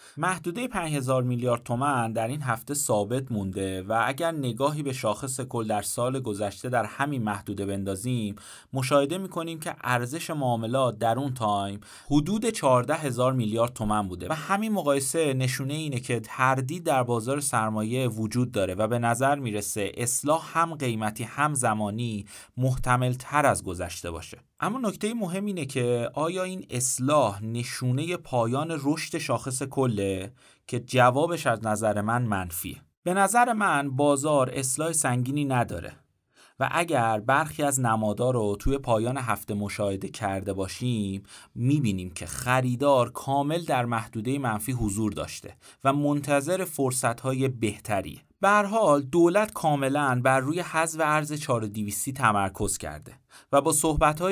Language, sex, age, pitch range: Persian, male, 30-49, 110-150 Hz